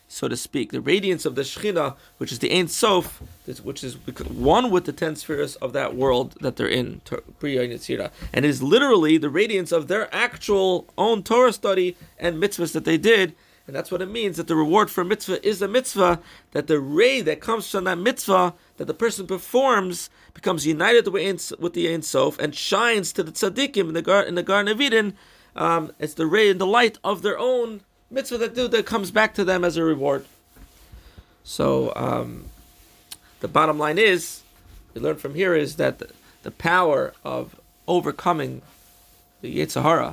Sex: male